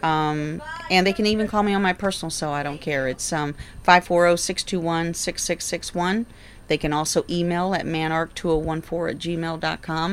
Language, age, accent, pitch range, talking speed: English, 40-59, American, 145-170 Hz, 155 wpm